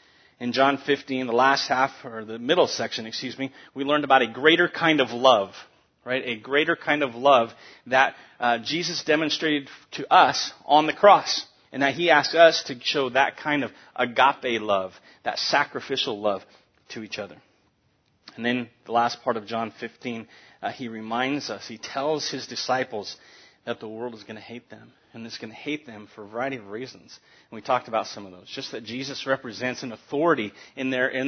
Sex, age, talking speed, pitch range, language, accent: male, 30-49, 200 wpm, 115-145 Hz, English, American